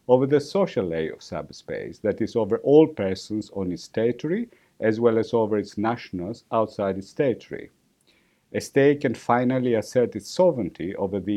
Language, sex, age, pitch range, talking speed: English, male, 50-69, 100-140 Hz, 170 wpm